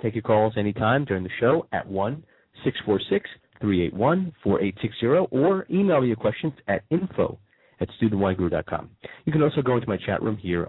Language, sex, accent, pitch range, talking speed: English, male, American, 95-130 Hz, 150 wpm